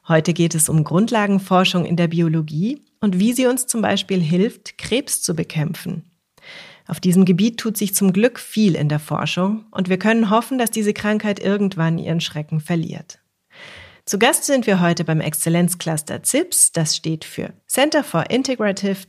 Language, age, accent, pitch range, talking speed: German, 30-49, German, 165-215 Hz, 170 wpm